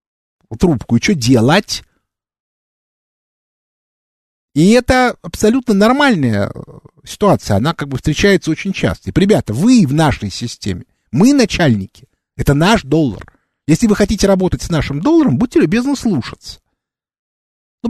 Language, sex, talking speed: Russian, male, 120 wpm